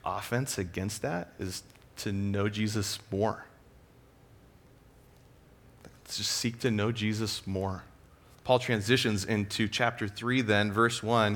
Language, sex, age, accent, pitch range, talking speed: English, male, 30-49, American, 110-130 Hz, 115 wpm